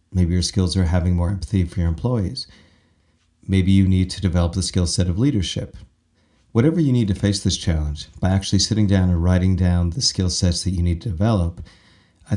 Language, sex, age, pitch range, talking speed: English, male, 40-59, 85-100 Hz, 210 wpm